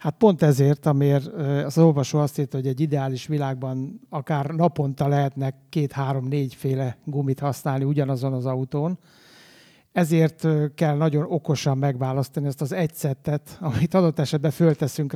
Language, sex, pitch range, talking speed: Hungarian, male, 140-160 Hz, 135 wpm